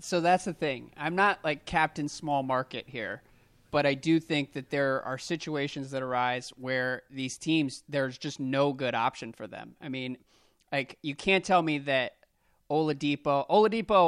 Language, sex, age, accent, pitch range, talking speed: English, male, 30-49, American, 130-160 Hz, 175 wpm